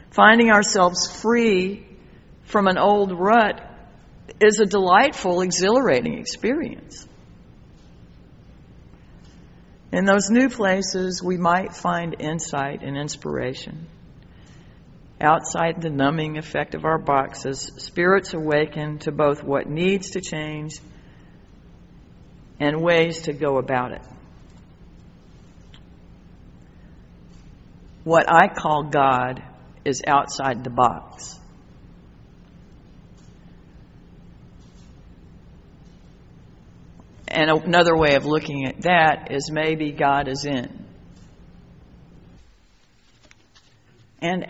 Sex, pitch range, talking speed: female, 140-185 Hz, 85 wpm